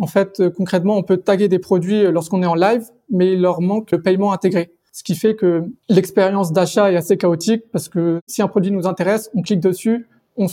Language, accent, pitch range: French, French, 175-205 Hz